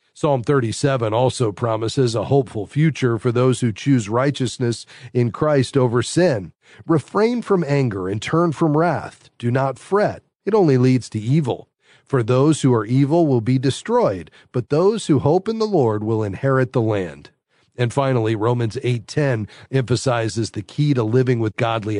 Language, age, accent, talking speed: English, 40-59, American, 165 wpm